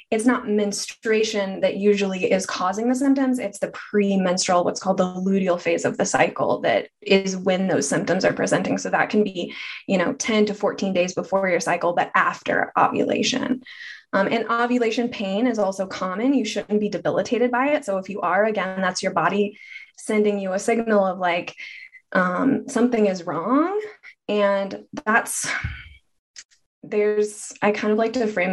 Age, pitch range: 20-39, 195-250 Hz